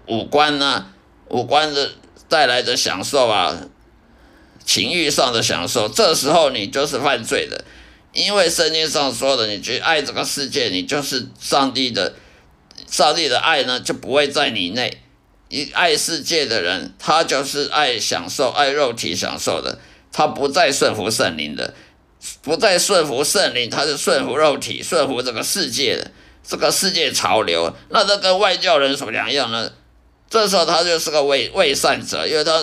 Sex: male